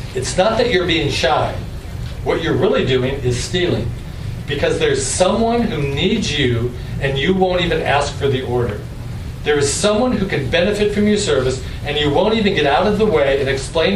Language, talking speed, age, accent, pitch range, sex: English, 200 wpm, 40-59, American, 125-180 Hz, male